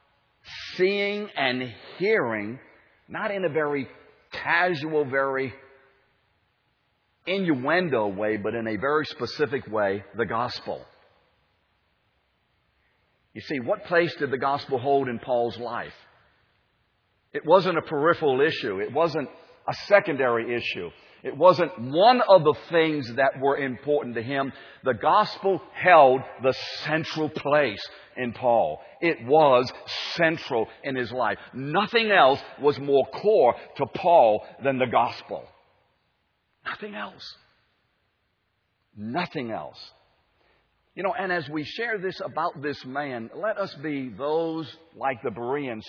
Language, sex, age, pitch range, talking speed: English, male, 50-69, 120-160 Hz, 125 wpm